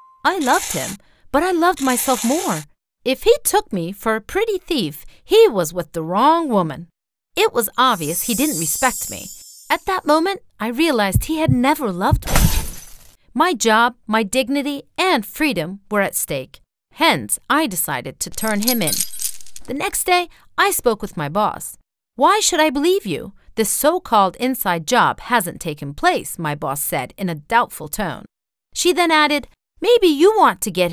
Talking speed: 175 wpm